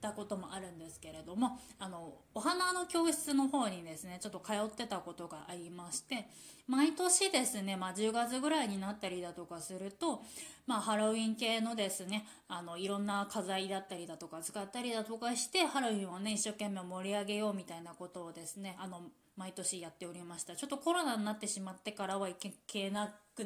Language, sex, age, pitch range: Japanese, female, 20-39, 180-240 Hz